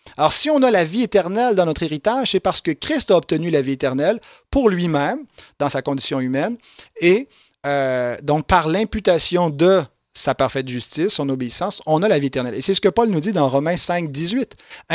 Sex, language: male, French